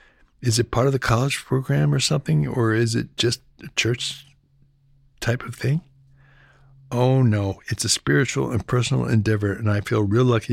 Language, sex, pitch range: English, male, 100-125 Hz